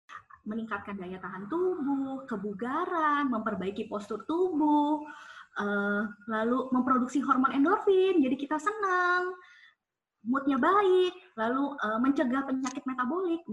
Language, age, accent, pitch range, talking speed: Indonesian, 20-39, native, 235-345 Hz, 100 wpm